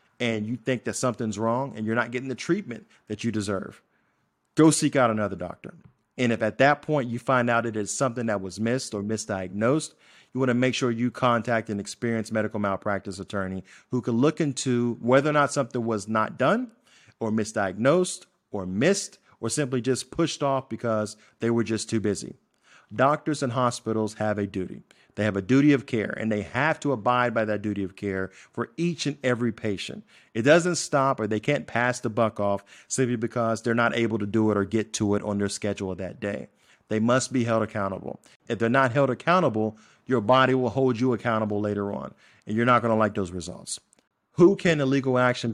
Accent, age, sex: American, 40-59, male